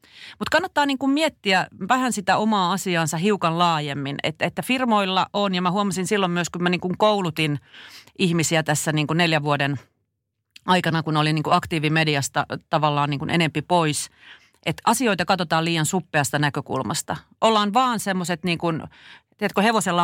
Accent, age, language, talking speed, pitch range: native, 40-59, Finnish, 125 wpm, 150-190 Hz